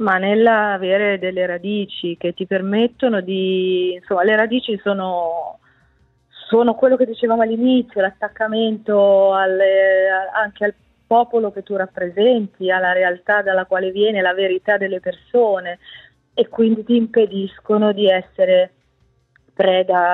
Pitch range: 190-215 Hz